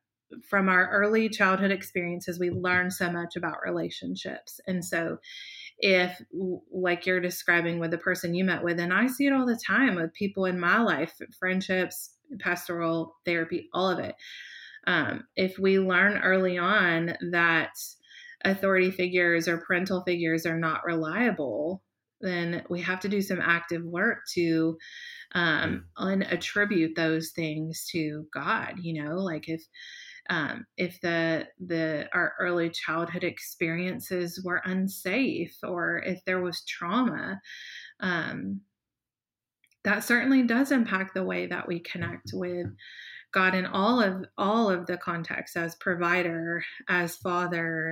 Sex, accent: female, American